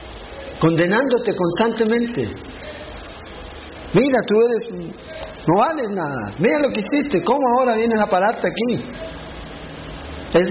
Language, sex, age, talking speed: Spanish, male, 50-69, 110 wpm